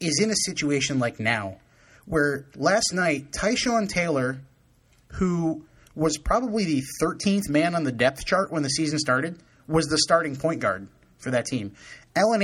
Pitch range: 135-180 Hz